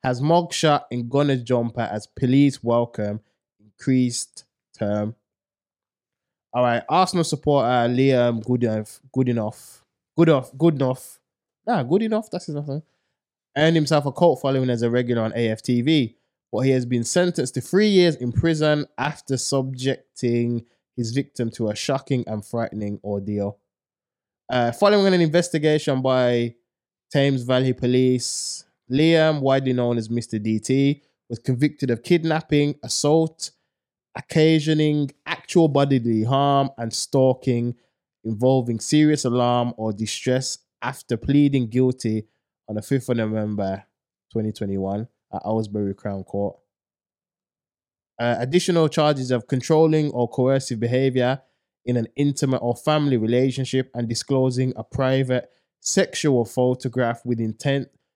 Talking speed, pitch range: 125 wpm, 115-145 Hz